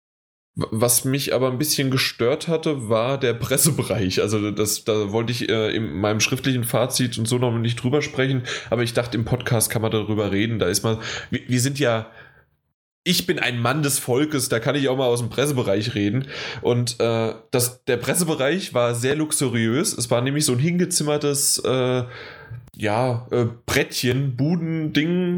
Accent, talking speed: German, 175 wpm